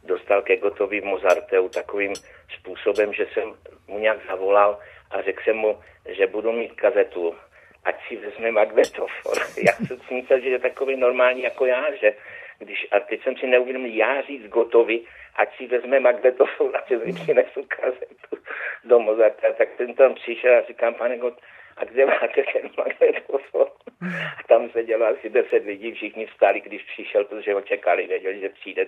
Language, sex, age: Czech, male, 60-79